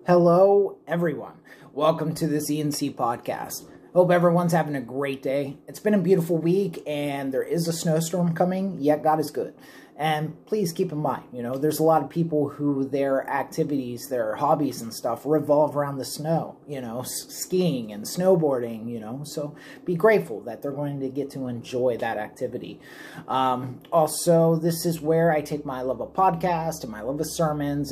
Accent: American